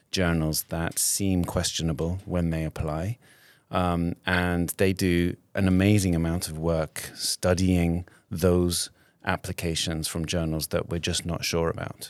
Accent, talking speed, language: British, 135 wpm, English